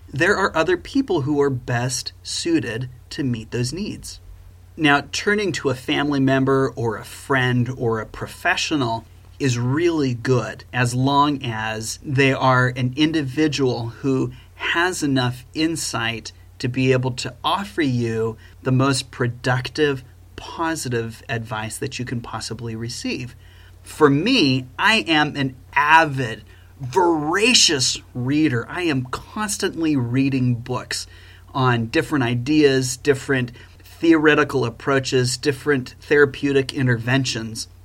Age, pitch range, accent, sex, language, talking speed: 30-49, 115-145 Hz, American, male, English, 120 wpm